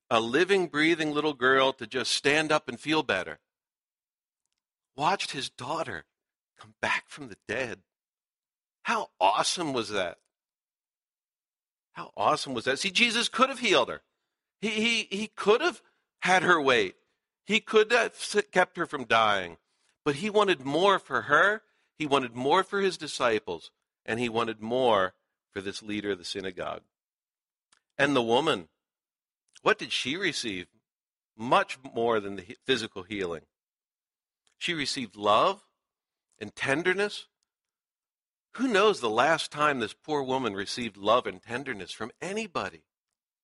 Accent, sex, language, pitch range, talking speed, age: American, male, English, 130-210 Hz, 140 wpm, 50-69